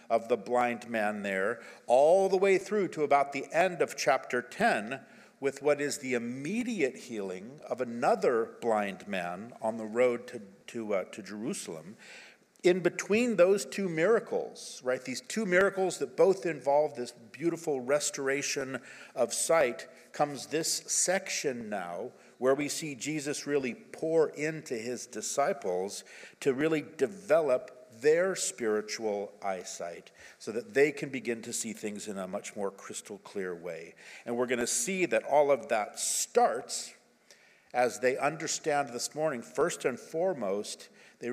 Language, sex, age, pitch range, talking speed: English, male, 50-69, 120-170 Hz, 150 wpm